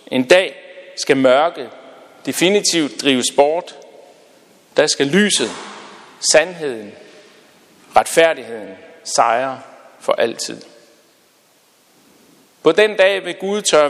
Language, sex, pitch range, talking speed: Danish, male, 145-200 Hz, 90 wpm